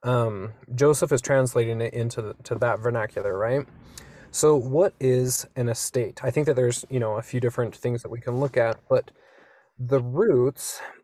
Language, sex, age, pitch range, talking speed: English, male, 20-39, 120-135 Hz, 185 wpm